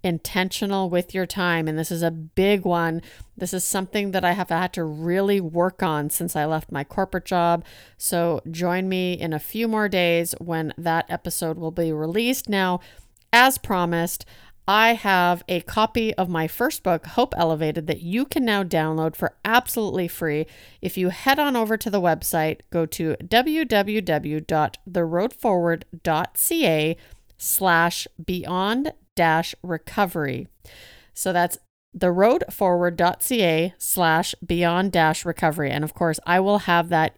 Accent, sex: American, female